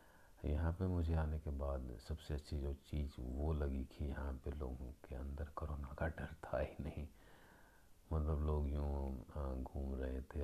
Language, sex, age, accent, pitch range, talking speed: Hindi, male, 50-69, native, 65-75 Hz, 170 wpm